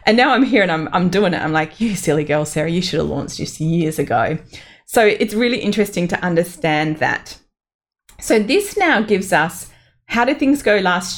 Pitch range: 160-210 Hz